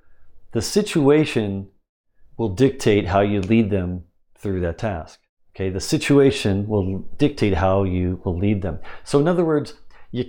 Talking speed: 150 wpm